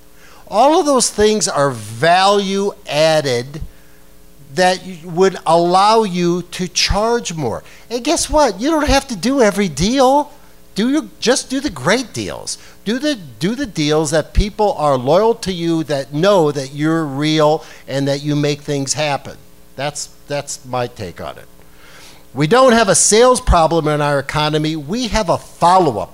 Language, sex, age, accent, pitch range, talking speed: English, male, 50-69, American, 125-200 Hz, 165 wpm